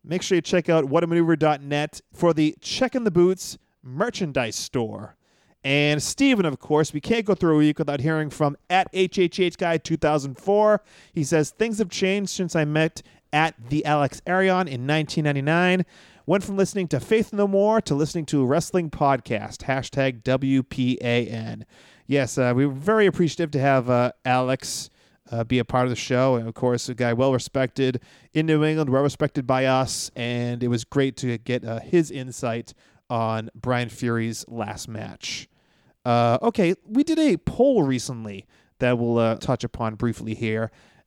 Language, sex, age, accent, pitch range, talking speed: English, male, 30-49, American, 125-175 Hz, 170 wpm